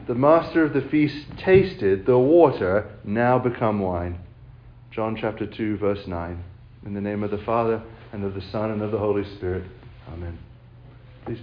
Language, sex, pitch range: English, male, 110-135 Hz